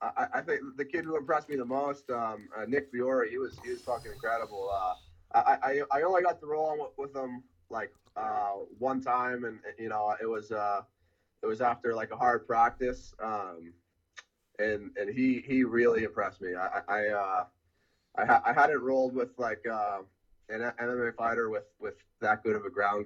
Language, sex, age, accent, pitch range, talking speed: English, male, 20-39, American, 105-140 Hz, 200 wpm